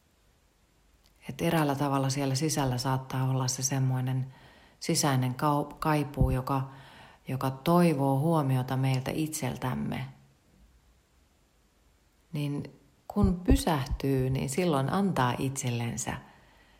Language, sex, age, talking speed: Finnish, female, 40-59, 85 wpm